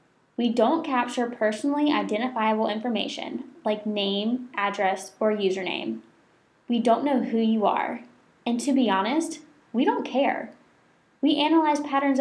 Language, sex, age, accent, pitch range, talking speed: English, female, 10-29, American, 210-270 Hz, 135 wpm